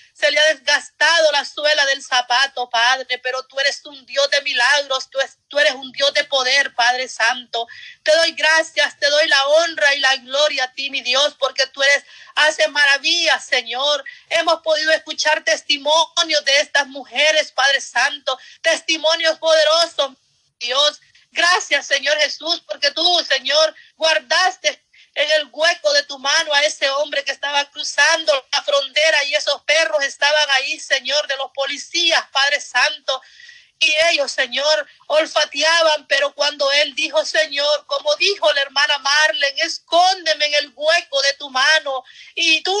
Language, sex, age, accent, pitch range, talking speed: Spanish, female, 40-59, American, 280-320 Hz, 150 wpm